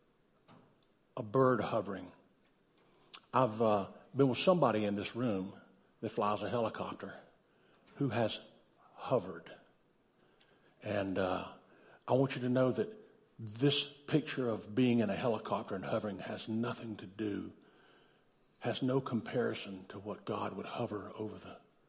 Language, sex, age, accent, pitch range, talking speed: English, male, 60-79, American, 110-135 Hz, 135 wpm